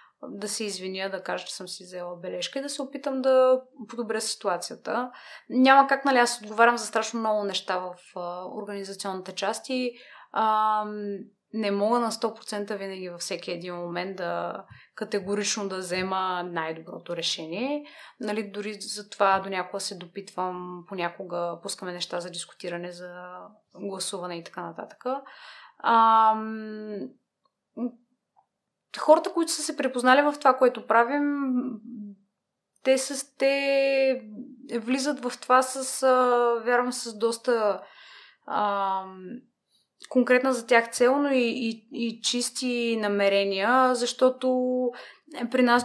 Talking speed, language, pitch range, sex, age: 125 wpm, Bulgarian, 195-250 Hz, female, 20-39